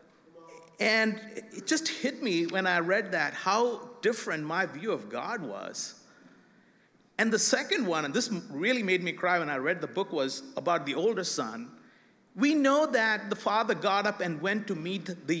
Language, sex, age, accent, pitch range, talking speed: English, male, 50-69, Indian, 185-245 Hz, 185 wpm